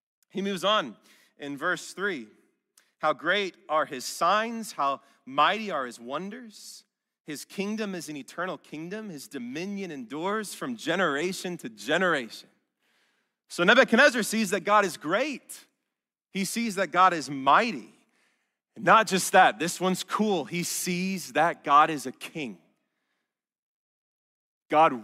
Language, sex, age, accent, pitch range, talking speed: English, male, 30-49, American, 160-230 Hz, 135 wpm